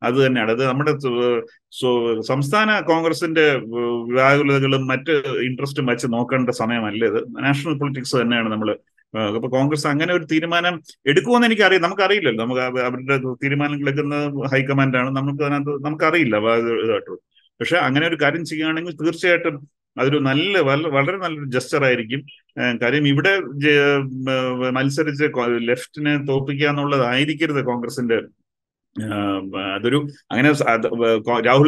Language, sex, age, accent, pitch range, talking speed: Malayalam, male, 30-49, native, 130-160 Hz, 110 wpm